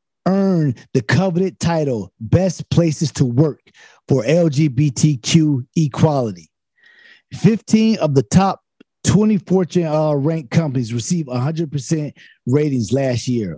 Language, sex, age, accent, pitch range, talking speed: English, male, 30-49, American, 125-160 Hz, 115 wpm